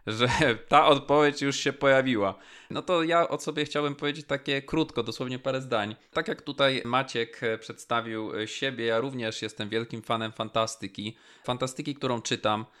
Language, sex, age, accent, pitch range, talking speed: Polish, male, 20-39, native, 110-150 Hz, 155 wpm